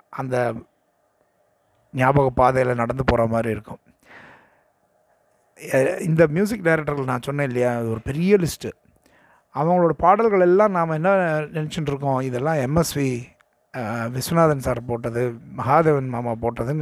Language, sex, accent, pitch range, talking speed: Tamil, male, native, 120-160 Hz, 110 wpm